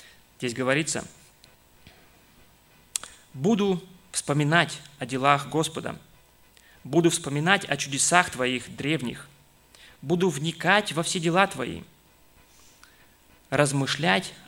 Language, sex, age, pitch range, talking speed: Russian, male, 20-39, 130-170 Hz, 85 wpm